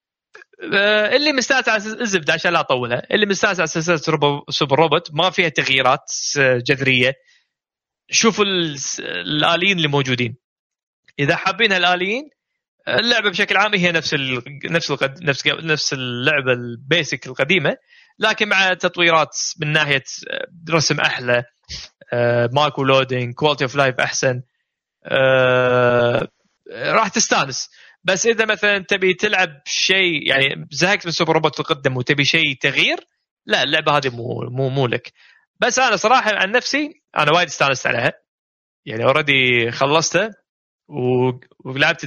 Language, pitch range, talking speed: Arabic, 135-190 Hz, 120 wpm